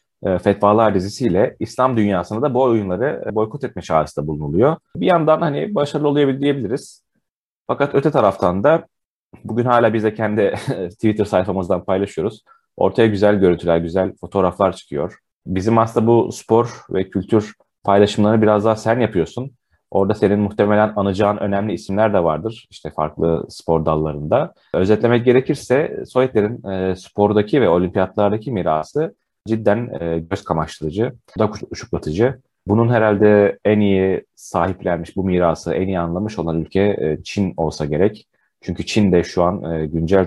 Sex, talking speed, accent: male, 135 wpm, native